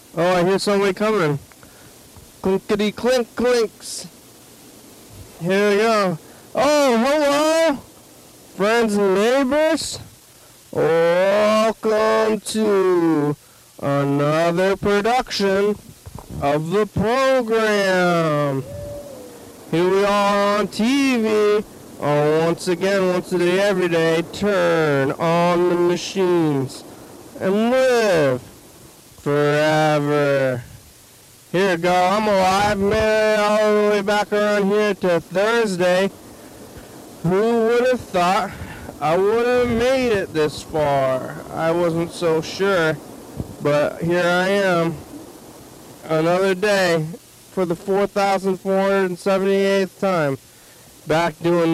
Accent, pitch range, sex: American, 160-210 Hz, male